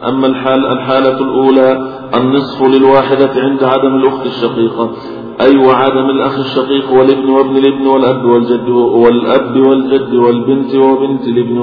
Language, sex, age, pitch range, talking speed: Arabic, male, 50-69, 125-135 Hz, 130 wpm